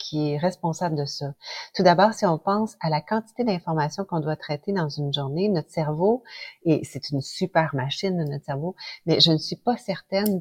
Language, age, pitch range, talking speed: French, 40-59, 150-190 Hz, 200 wpm